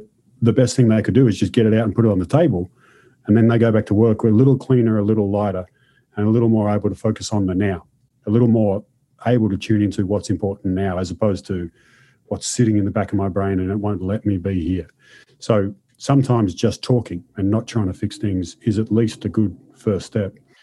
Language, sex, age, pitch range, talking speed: English, male, 40-59, 100-125 Hz, 245 wpm